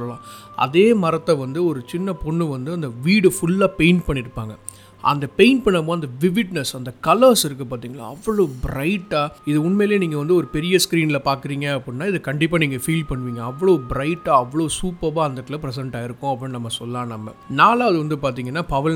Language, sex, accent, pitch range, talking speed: Tamil, male, native, 130-170 Hz, 65 wpm